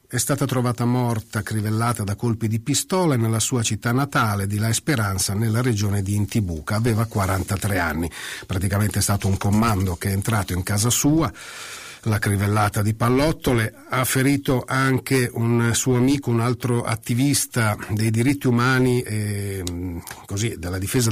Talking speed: 155 wpm